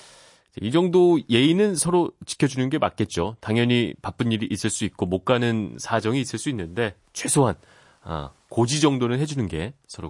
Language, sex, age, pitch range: Korean, male, 30-49, 95-130 Hz